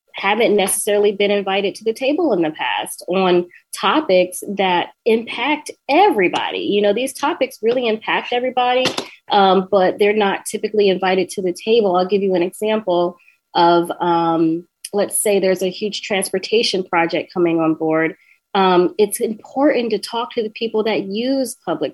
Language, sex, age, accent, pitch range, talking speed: English, female, 20-39, American, 175-220 Hz, 160 wpm